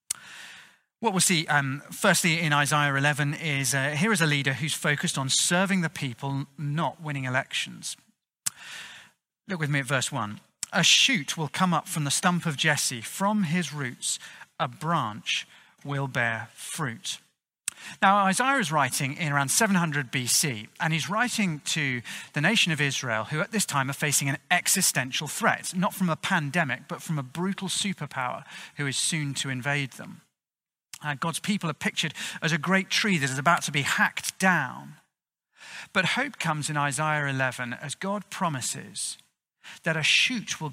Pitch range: 140-185 Hz